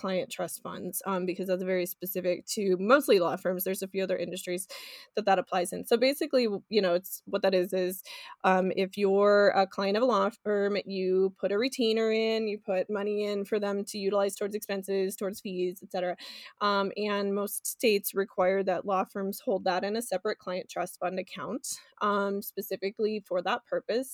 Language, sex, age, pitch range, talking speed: English, female, 20-39, 185-210 Hz, 200 wpm